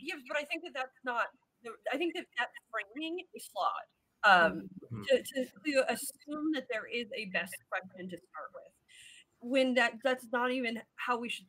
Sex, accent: female, American